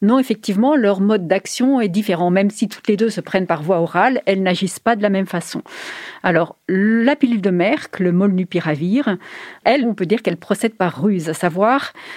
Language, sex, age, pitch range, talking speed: French, female, 40-59, 180-225 Hz, 200 wpm